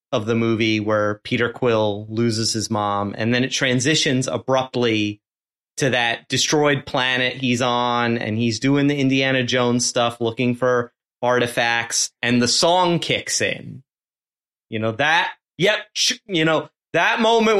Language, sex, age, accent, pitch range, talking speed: English, male, 30-49, American, 120-170 Hz, 145 wpm